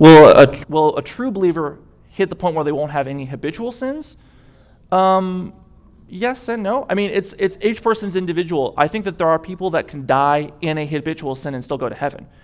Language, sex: English, male